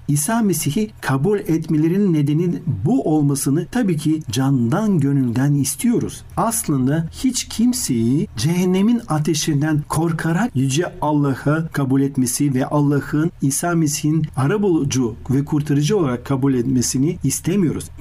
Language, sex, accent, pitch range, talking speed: Turkish, male, native, 130-170 Hz, 110 wpm